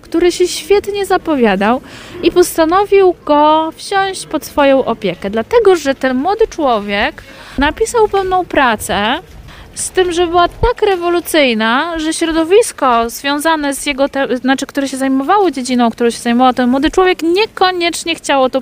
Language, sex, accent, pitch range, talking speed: Polish, female, native, 240-340 Hz, 145 wpm